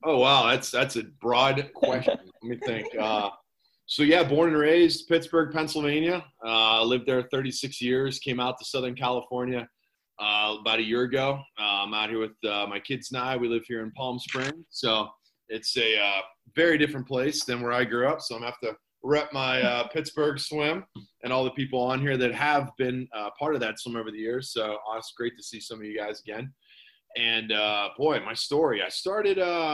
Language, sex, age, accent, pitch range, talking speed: English, male, 20-39, American, 115-140 Hz, 220 wpm